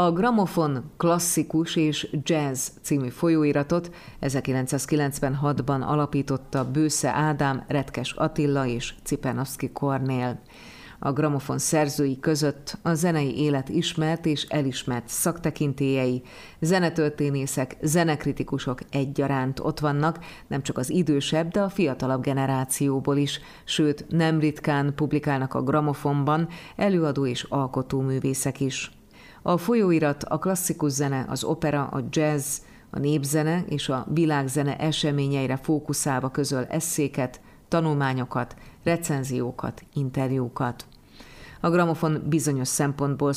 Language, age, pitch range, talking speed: Hungarian, 30-49, 135-155 Hz, 105 wpm